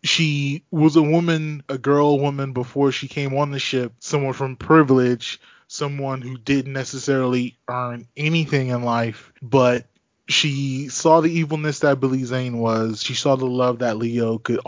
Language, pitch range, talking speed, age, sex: English, 125-145 Hz, 165 wpm, 20-39, male